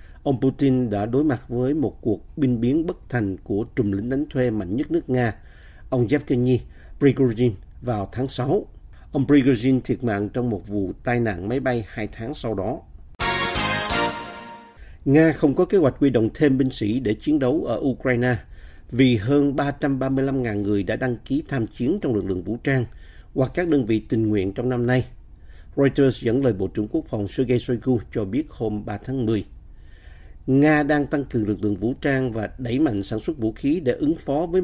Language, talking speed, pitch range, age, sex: Vietnamese, 195 wpm, 105-135 Hz, 50-69, male